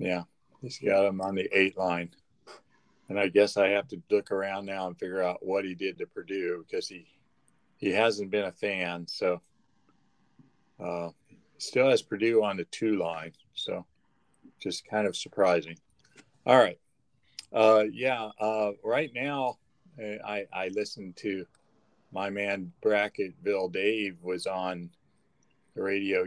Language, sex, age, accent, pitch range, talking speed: English, male, 40-59, American, 95-115 Hz, 150 wpm